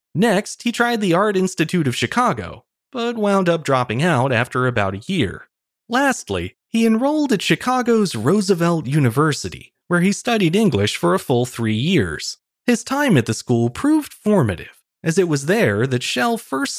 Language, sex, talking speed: English, male, 170 wpm